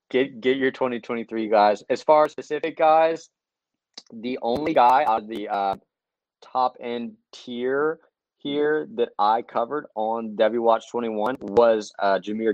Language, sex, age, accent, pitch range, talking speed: English, male, 20-39, American, 110-130 Hz, 165 wpm